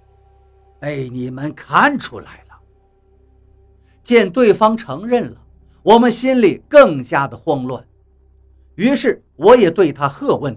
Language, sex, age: Chinese, male, 50-69